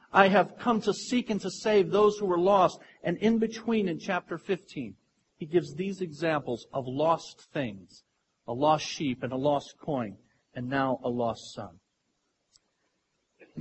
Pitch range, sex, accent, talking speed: 145-200 Hz, male, American, 170 wpm